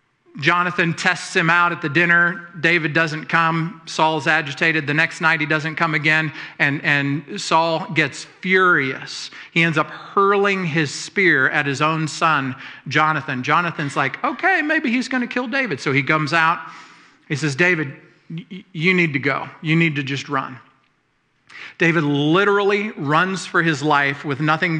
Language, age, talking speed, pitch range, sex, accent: English, 40-59, 165 wpm, 145-175 Hz, male, American